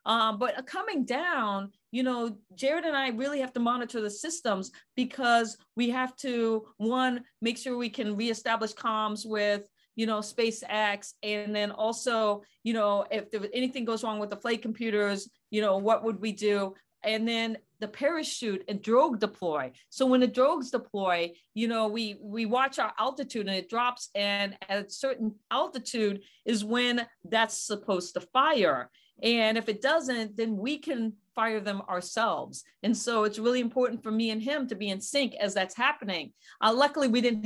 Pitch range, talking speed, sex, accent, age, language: 200-240 Hz, 185 wpm, female, American, 40-59, English